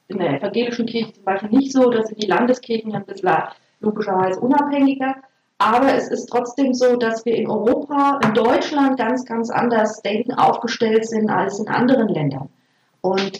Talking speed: 165 wpm